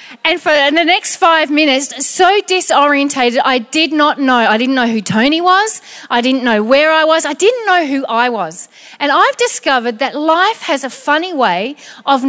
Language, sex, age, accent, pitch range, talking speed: English, female, 40-59, Australian, 265-320 Hz, 195 wpm